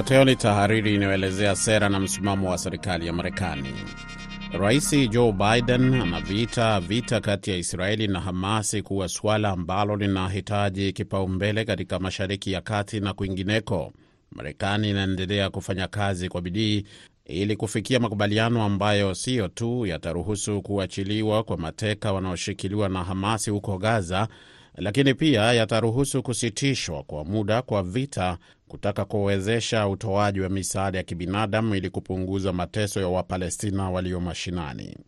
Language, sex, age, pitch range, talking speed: Swahili, male, 30-49, 95-110 Hz, 125 wpm